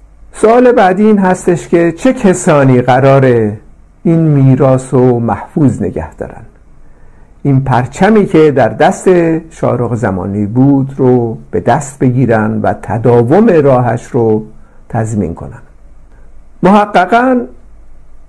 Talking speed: 105 wpm